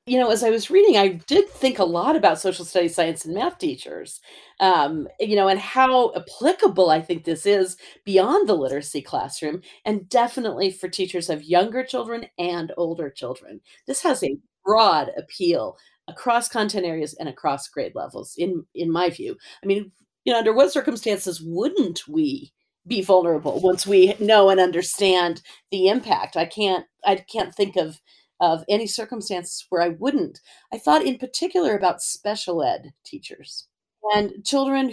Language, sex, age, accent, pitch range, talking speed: English, female, 40-59, American, 170-235 Hz, 170 wpm